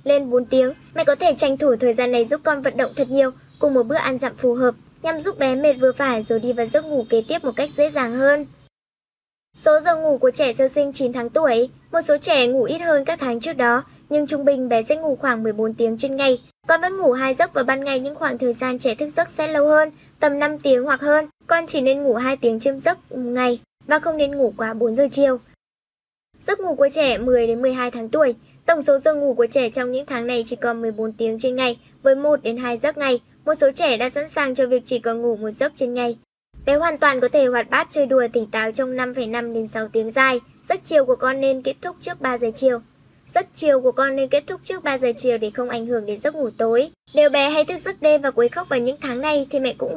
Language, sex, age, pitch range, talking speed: Vietnamese, male, 10-29, 245-295 Hz, 270 wpm